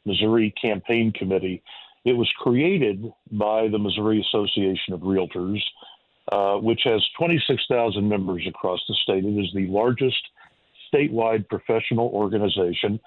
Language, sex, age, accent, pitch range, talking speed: English, male, 50-69, American, 105-125 Hz, 125 wpm